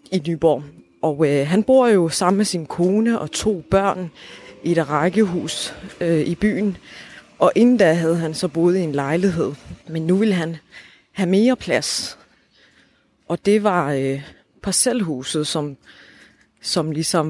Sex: female